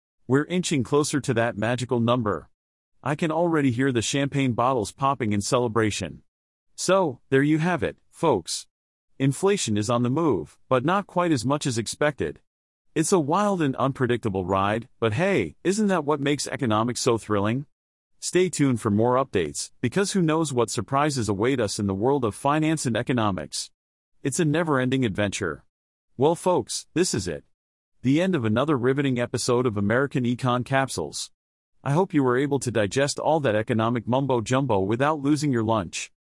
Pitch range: 110-150 Hz